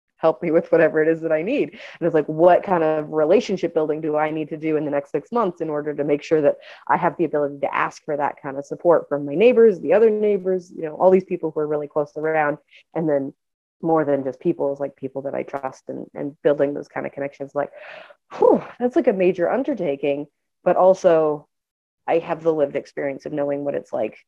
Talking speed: 240 wpm